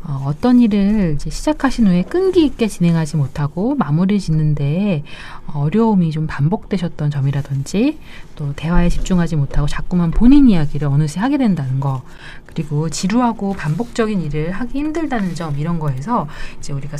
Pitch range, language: 150-220 Hz, Korean